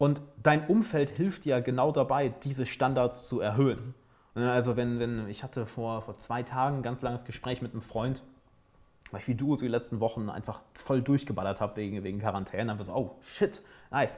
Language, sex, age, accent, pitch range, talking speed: German, male, 30-49, German, 115-140 Hz, 210 wpm